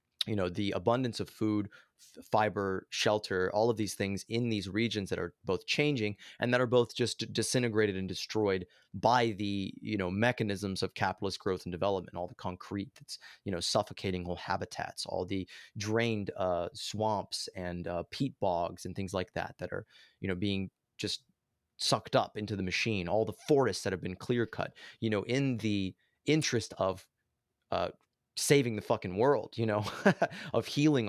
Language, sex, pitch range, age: English, male, 95-115 Hz, 30-49